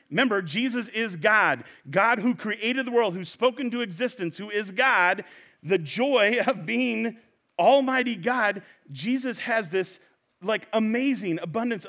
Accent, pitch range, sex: American, 190-245 Hz, male